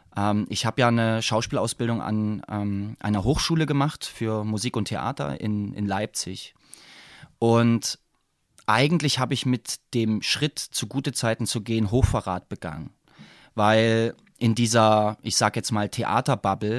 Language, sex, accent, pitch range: German, male, German, 110-135 Hz